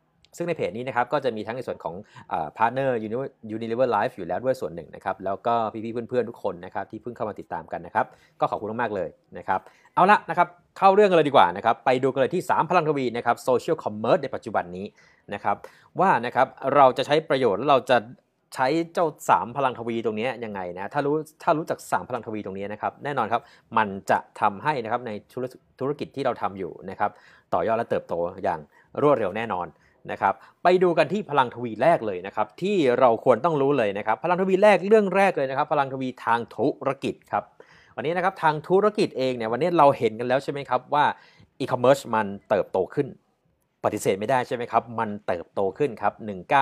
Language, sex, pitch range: Thai, male, 115-165 Hz